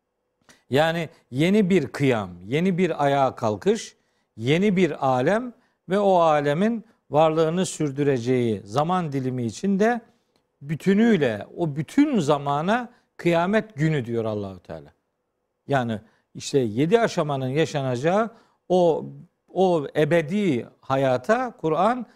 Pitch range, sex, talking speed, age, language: 135-210 Hz, male, 105 wpm, 50-69, Turkish